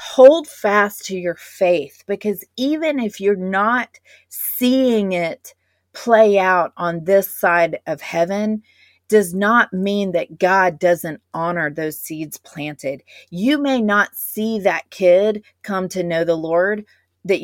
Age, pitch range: 30-49, 170-215 Hz